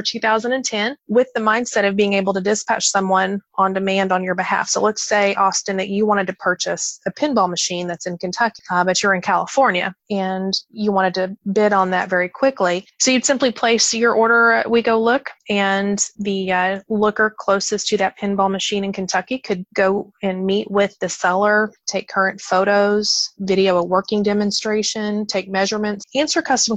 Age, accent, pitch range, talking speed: 30-49, American, 190-215 Hz, 185 wpm